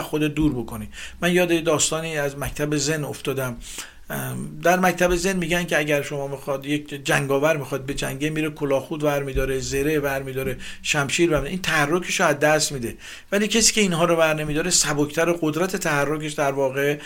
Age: 50-69